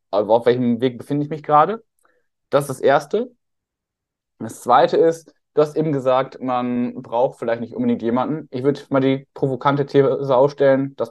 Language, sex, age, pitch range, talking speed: German, male, 10-29, 125-150 Hz, 180 wpm